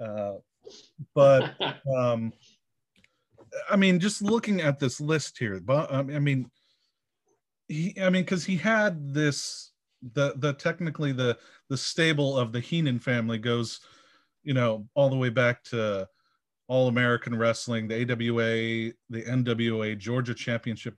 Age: 30-49